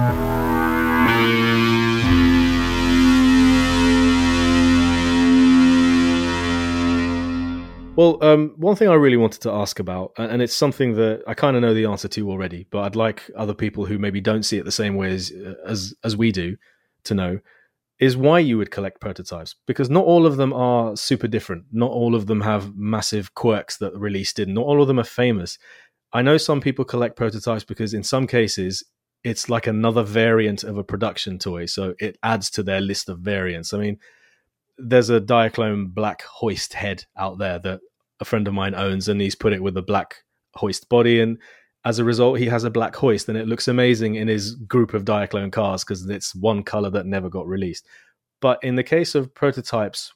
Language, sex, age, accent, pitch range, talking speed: English, male, 30-49, British, 95-115 Hz, 190 wpm